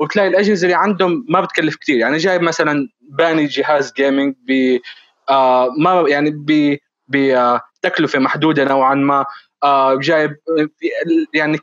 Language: Arabic